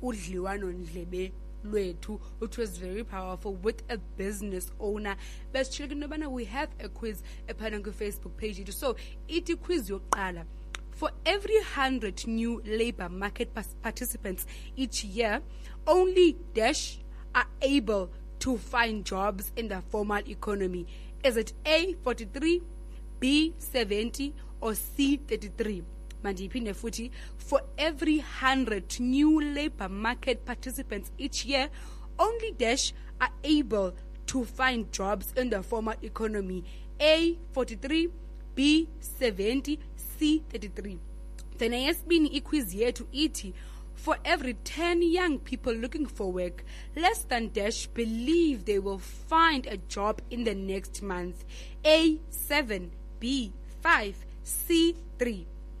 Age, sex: 20-39, female